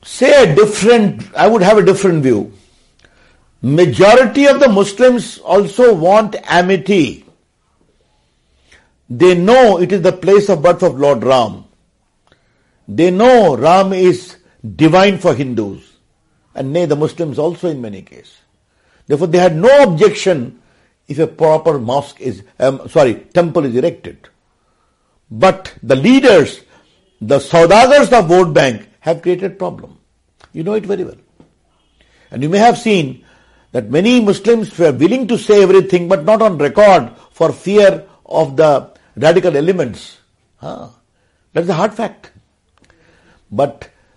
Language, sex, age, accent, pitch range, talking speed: English, male, 60-79, Indian, 130-200 Hz, 135 wpm